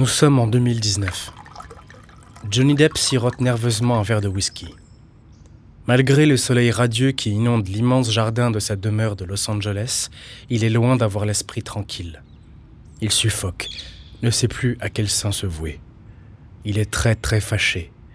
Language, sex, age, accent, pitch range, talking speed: French, male, 20-39, French, 100-120 Hz, 155 wpm